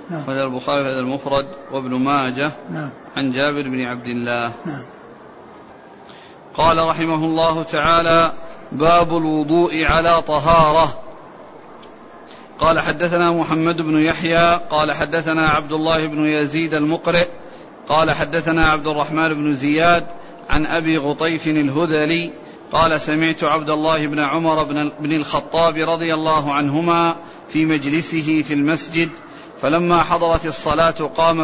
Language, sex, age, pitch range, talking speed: Arabic, male, 40-59, 155-170 Hz, 115 wpm